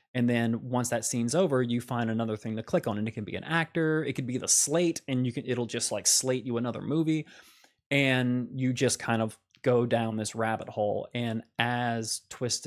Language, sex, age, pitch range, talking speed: English, male, 20-39, 110-130 Hz, 225 wpm